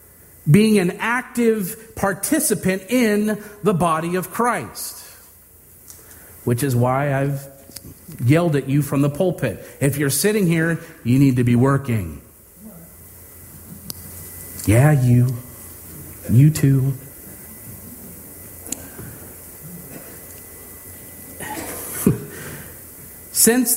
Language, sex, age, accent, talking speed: English, male, 40-59, American, 85 wpm